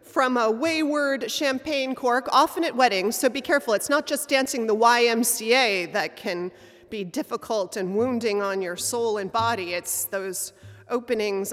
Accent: American